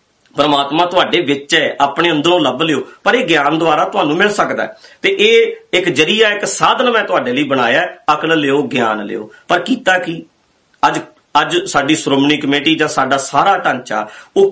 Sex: male